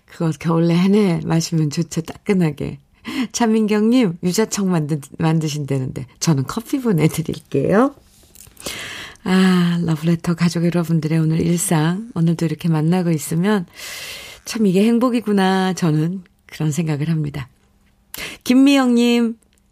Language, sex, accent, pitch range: Korean, female, native, 155-225 Hz